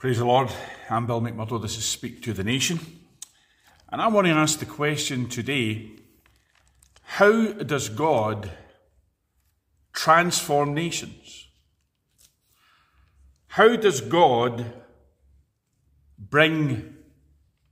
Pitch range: 115-155 Hz